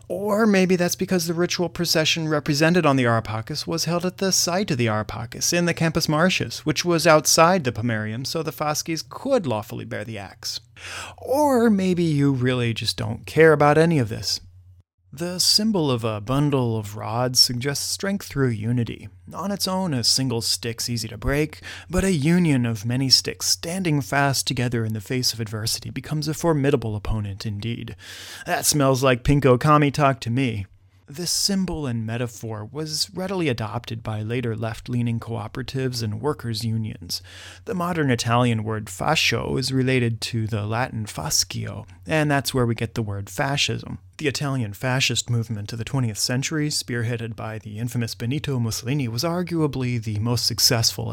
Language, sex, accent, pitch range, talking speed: English, male, American, 110-150 Hz, 170 wpm